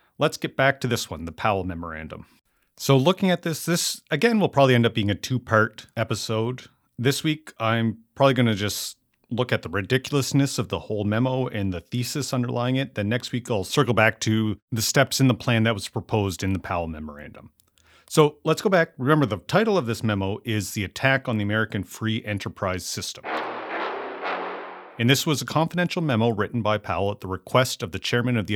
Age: 40-59